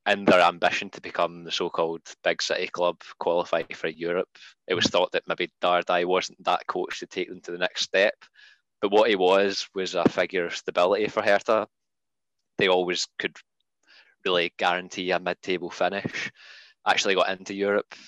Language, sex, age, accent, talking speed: English, male, 20-39, British, 175 wpm